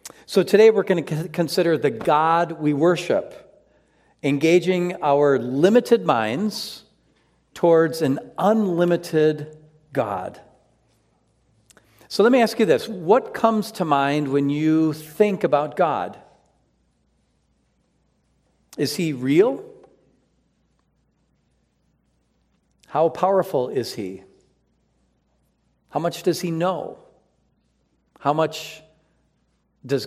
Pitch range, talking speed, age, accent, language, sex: 145-185 Hz, 95 wpm, 50-69, American, English, male